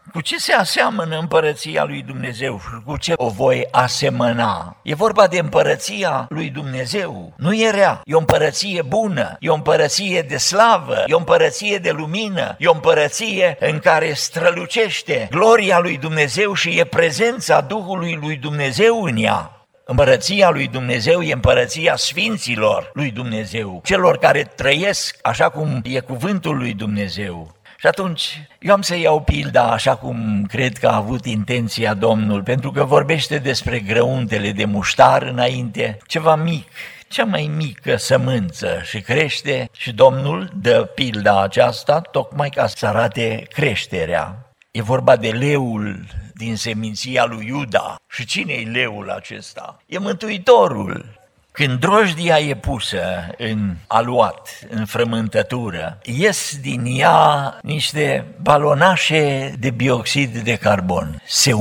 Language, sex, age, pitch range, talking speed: Romanian, male, 60-79, 115-170 Hz, 140 wpm